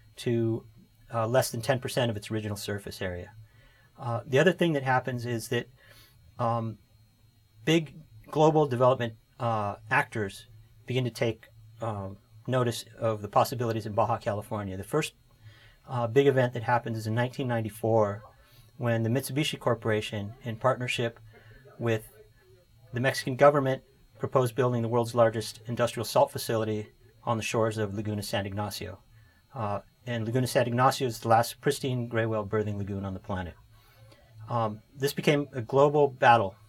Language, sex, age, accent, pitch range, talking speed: English, male, 40-59, American, 110-130 Hz, 150 wpm